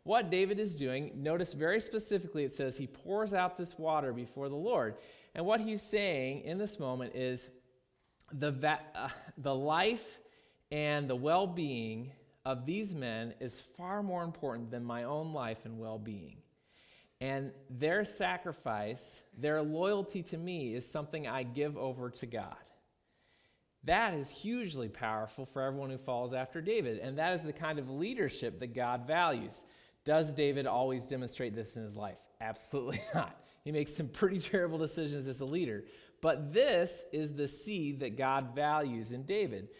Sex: male